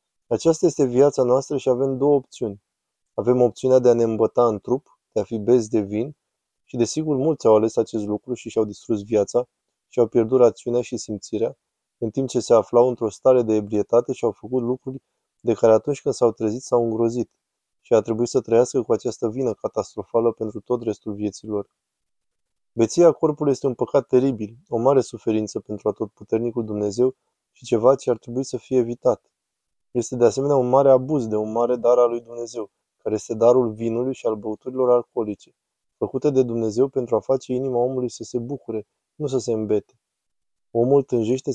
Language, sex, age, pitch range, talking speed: Romanian, male, 20-39, 110-130 Hz, 190 wpm